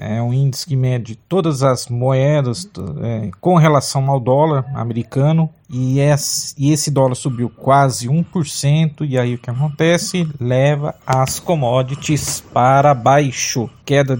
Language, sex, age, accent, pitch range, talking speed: Portuguese, male, 50-69, Brazilian, 130-160 Hz, 130 wpm